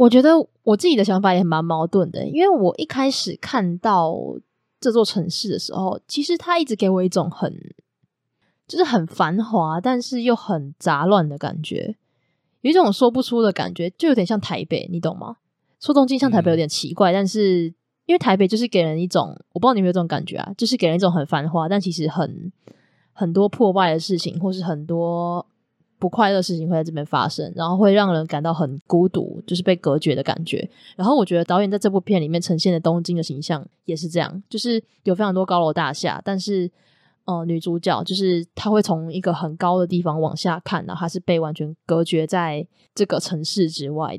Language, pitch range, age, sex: Chinese, 165-205 Hz, 20-39, female